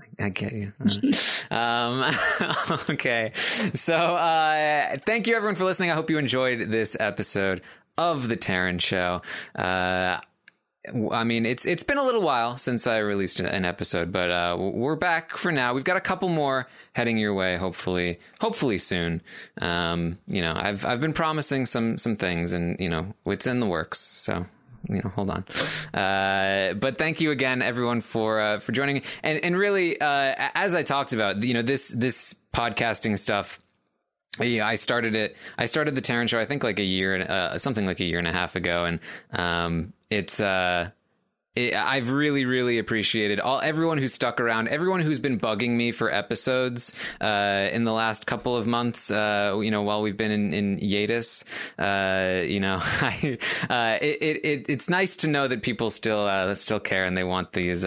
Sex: male